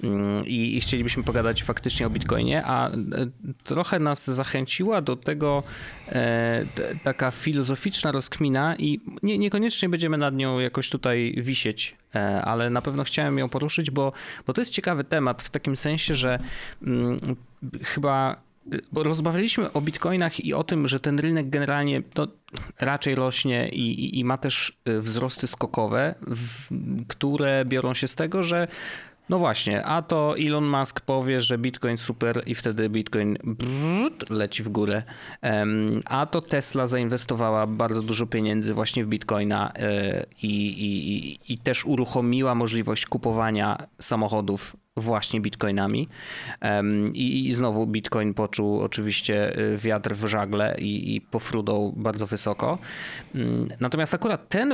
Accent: native